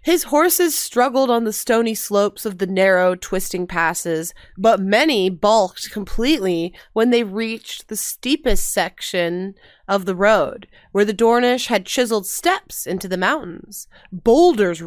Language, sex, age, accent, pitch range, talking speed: English, female, 20-39, American, 185-240 Hz, 140 wpm